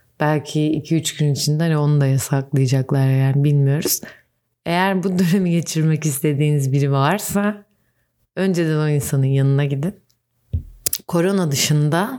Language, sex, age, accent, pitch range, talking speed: Turkish, female, 30-49, native, 145-180 Hz, 120 wpm